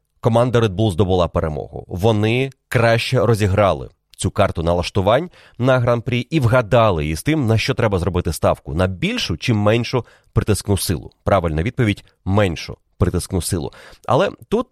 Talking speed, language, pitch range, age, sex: 145 wpm, Ukrainian, 105-140 Hz, 30-49, male